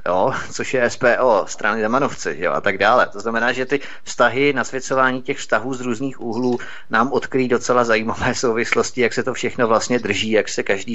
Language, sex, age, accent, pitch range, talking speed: Czech, male, 30-49, native, 110-125 Hz, 185 wpm